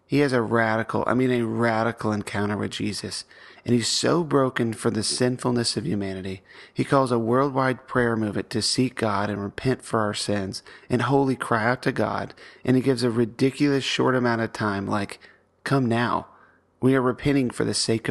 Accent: American